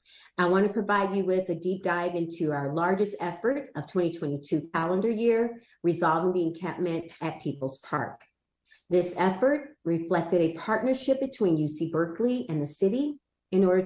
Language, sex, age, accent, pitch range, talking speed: English, female, 40-59, American, 165-220 Hz, 155 wpm